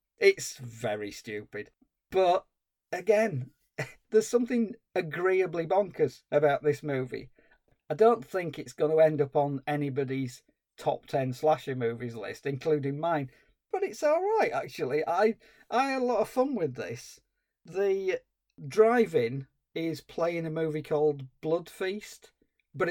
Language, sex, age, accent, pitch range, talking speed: English, male, 40-59, British, 135-165 Hz, 140 wpm